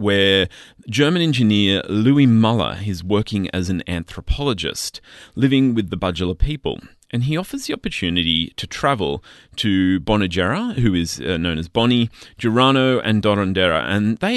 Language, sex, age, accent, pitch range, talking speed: English, male, 30-49, Australian, 90-120 Hz, 145 wpm